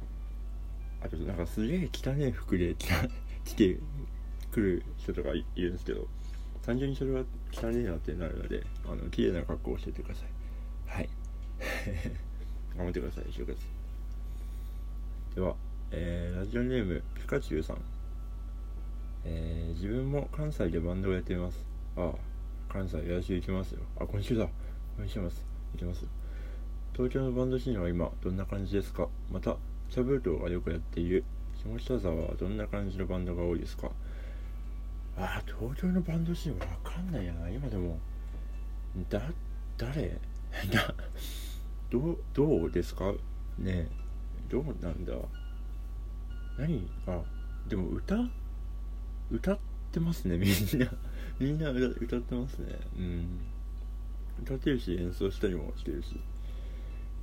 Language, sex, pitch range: Japanese, male, 80-100 Hz